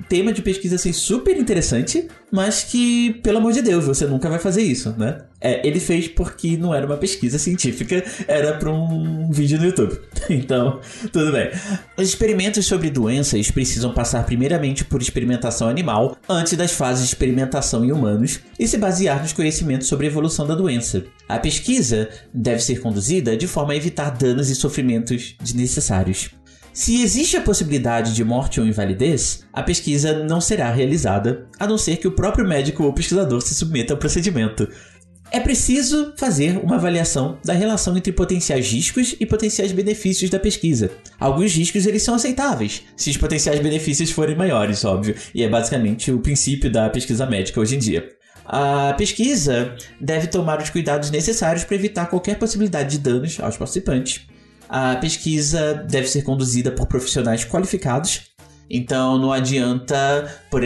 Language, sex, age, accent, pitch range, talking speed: Portuguese, male, 20-39, Brazilian, 125-180 Hz, 165 wpm